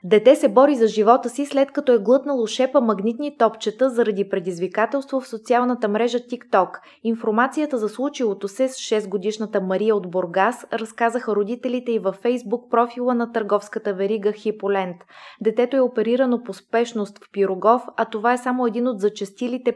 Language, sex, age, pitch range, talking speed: Bulgarian, female, 20-39, 205-250 Hz, 160 wpm